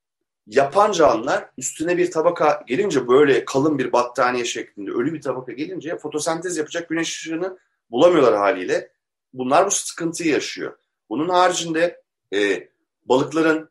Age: 30-49